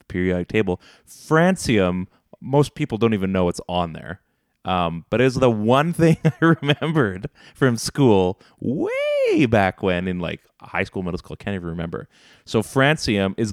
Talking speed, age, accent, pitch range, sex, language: 160 wpm, 20-39, American, 90-120 Hz, male, English